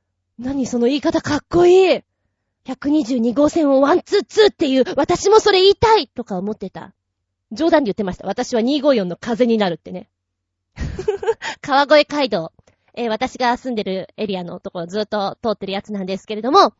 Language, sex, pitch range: Japanese, female, 195-310 Hz